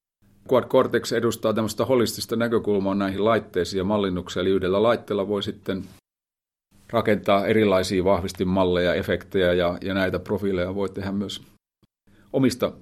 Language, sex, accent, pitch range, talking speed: Finnish, male, native, 90-110 Hz, 120 wpm